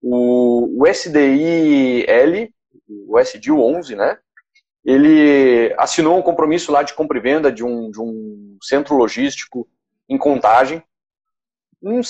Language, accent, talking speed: Portuguese, Brazilian, 125 wpm